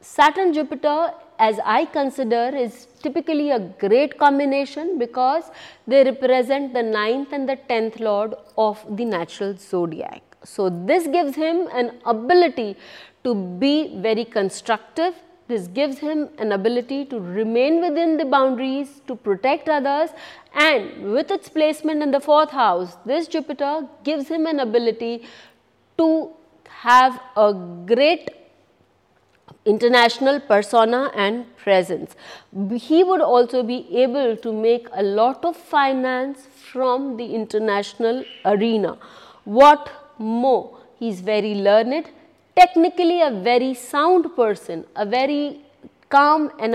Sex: female